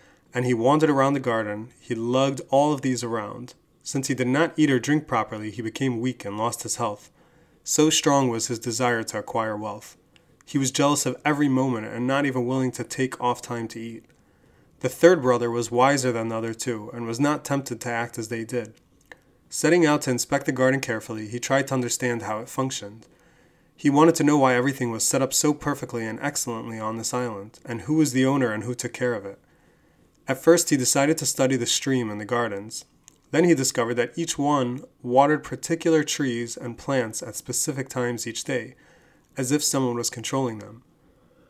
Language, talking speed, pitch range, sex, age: English, 205 wpm, 120-145 Hz, male, 30-49